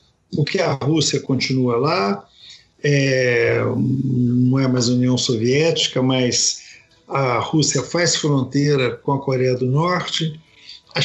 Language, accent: Portuguese, Brazilian